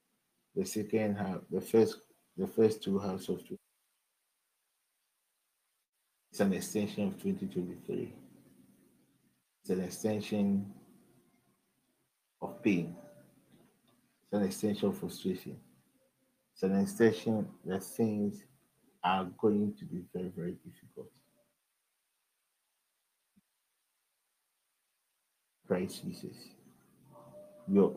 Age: 50-69